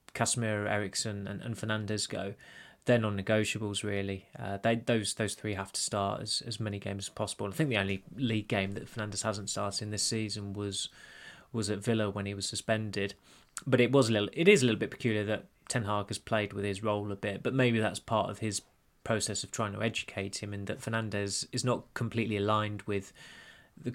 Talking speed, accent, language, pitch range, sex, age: 220 wpm, British, English, 100-115 Hz, male, 20-39